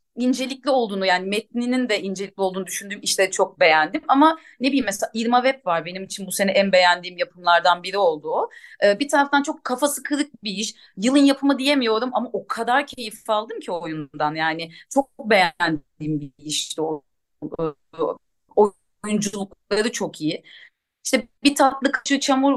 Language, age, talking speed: Turkish, 30-49, 155 wpm